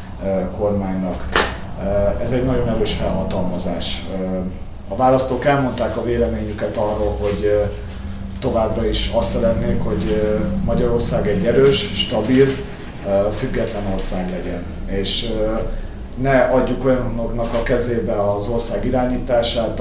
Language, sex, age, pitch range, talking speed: Hungarian, male, 30-49, 100-120 Hz, 105 wpm